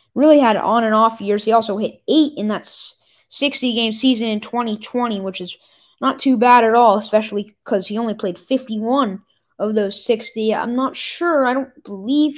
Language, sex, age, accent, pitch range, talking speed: English, female, 10-29, American, 205-255 Hz, 175 wpm